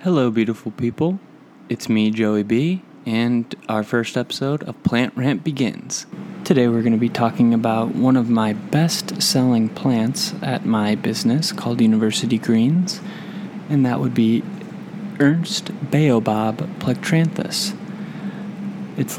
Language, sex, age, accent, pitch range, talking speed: English, male, 30-49, American, 120-200 Hz, 130 wpm